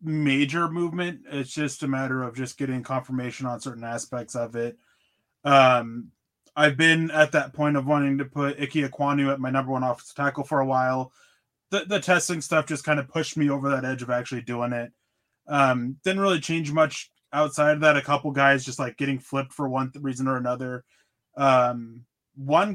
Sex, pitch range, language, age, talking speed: male, 125-150 Hz, English, 20-39, 195 wpm